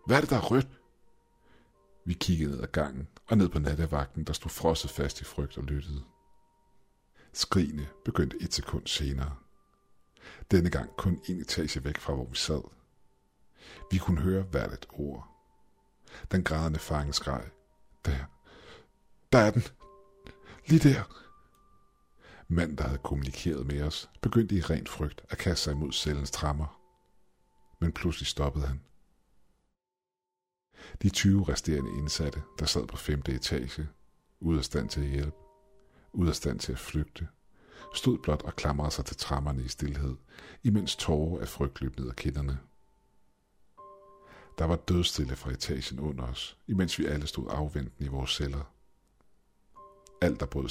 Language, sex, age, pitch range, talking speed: Danish, male, 50-69, 70-90 Hz, 155 wpm